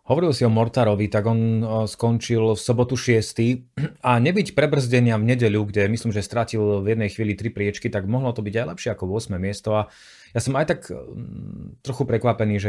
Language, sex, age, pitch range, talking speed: Slovak, male, 30-49, 100-120 Hz, 195 wpm